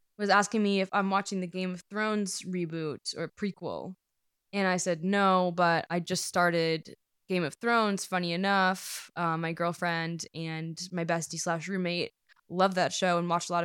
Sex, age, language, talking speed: female, 10-29, English, 180 wpm